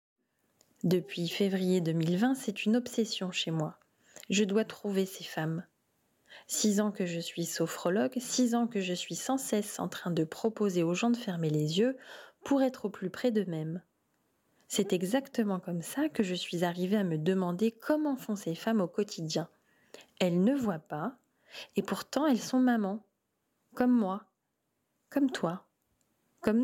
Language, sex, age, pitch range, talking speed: French, female, 20-39, 175-225 Hz, 165 wpm